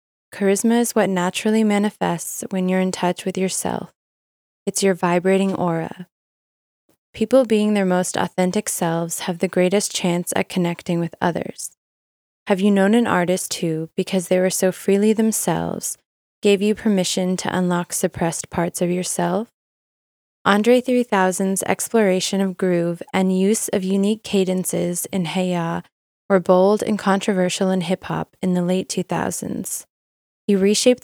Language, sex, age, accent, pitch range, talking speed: English, female, 20-39, American, 180-200 Hz, 145 wpm